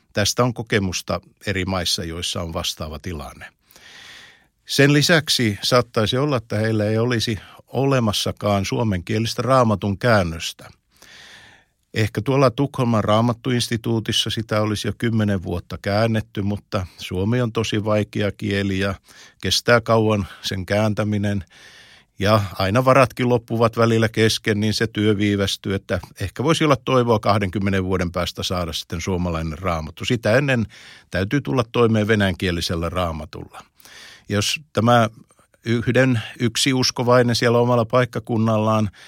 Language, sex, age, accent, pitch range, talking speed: Finnish, male, 50-69, native, 100-120 Hz, 120 wpm